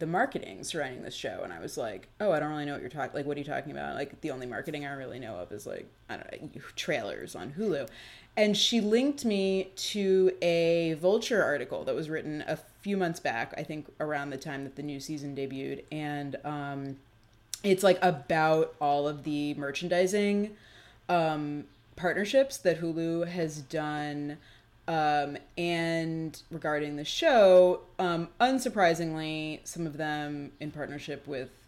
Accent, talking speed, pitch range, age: American, 175 wpm, 145-175 Hz, 20-39